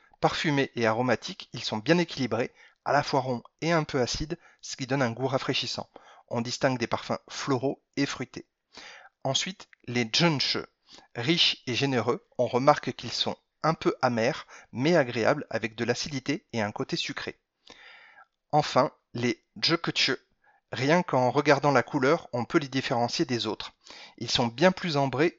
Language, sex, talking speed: French, male, 165 wpm